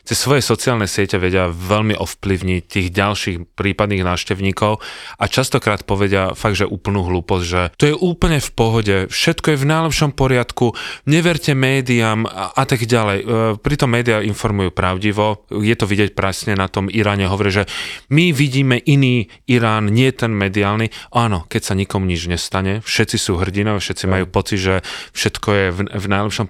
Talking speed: 165 wpm